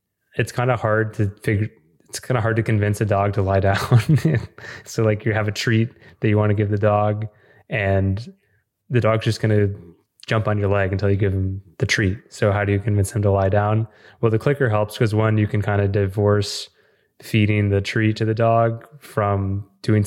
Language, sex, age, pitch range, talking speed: English, male, 20-39, 100-115 Hz, 220 wpm